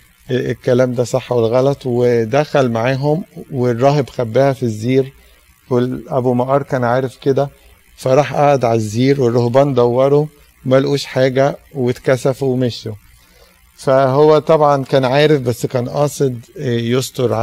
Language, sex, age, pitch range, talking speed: Arabic, male, 50-69, 115-135 Hz, 115 wpm